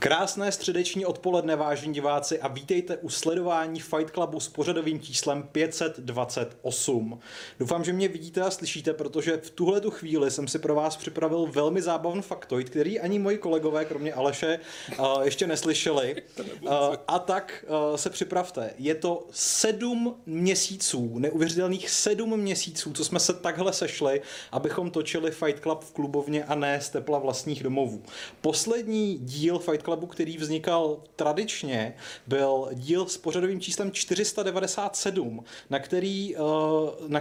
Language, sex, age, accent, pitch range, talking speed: Czech, male, 30-49, native, 145-180 Hz, 130 wpm